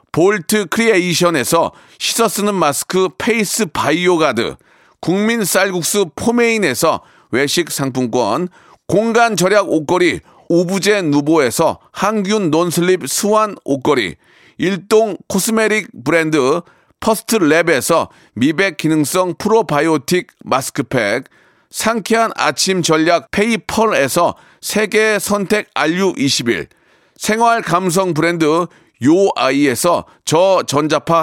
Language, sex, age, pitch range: Korean, male, 40-59, 160-215 Hz